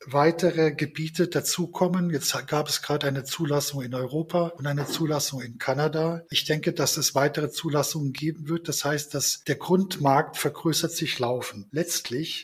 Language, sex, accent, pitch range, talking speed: German, male, German, 140-160 Hz, 160 wpm